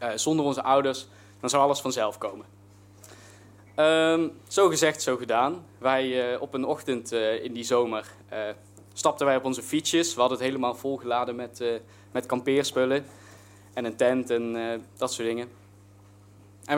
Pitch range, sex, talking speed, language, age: 110-140 Hz, male, 170 wpm, Dutch, 20-39